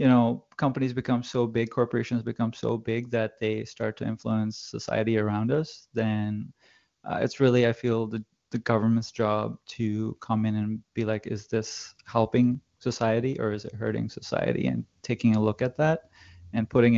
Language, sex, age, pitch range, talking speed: English, male, 20-39, 105-120 Hz, 180 wpm